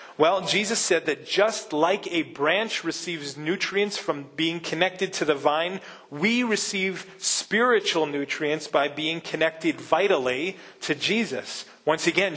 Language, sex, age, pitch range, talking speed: English, male, 30-49, 150-205 Hz, 135 wpm